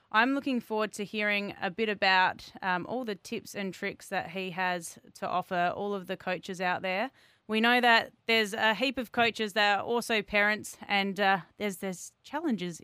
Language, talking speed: English, 195 wpm